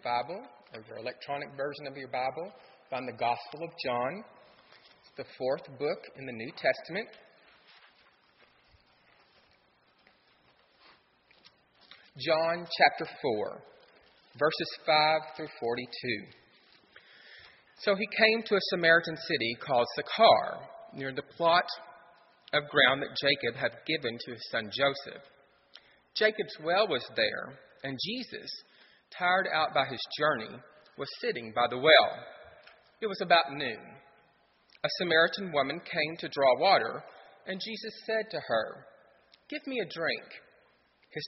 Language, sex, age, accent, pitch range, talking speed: English, male, 40-59, American, 135-205 Hz, 125 wpm